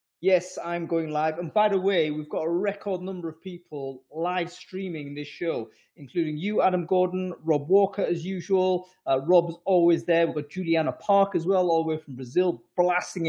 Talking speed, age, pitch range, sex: 195 wpm, 30-49, 135-175 Hz, male